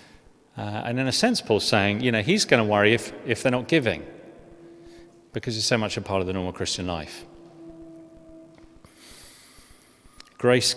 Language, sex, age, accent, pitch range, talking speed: English, male, 40-59, British, 100-140 Hz, 165 wpm